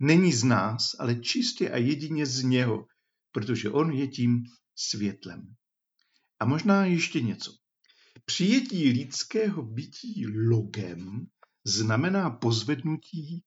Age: 50-69